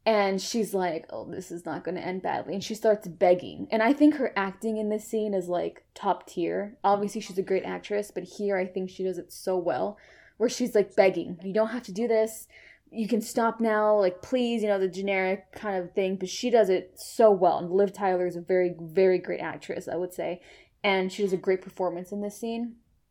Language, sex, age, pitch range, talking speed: English, female, 20-39, 190-240 Hz, 235 wpm